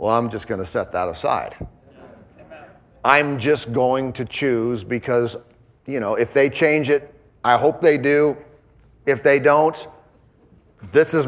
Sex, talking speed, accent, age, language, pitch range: male, 155 wpm, American, 40-59, English, 120-145 Hz